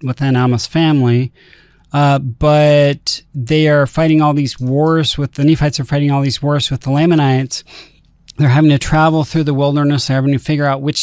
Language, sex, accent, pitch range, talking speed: English, male, American, 140-165 Hz, 190 wpm